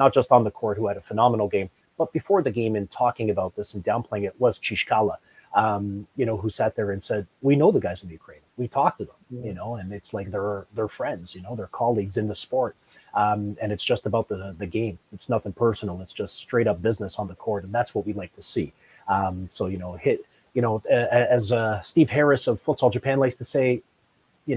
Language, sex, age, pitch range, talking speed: English, male, 30-49, 100-125 Hz, 250 wpm